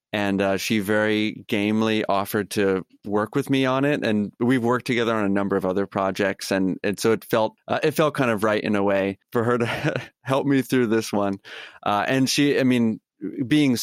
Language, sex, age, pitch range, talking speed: English, male, 30-49, 100-125 Hz, 210 wpm